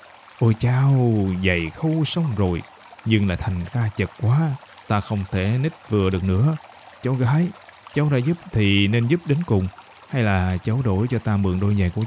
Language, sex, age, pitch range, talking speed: Vietnamese, male, 20-39, 95-125 Hz, 195 wpm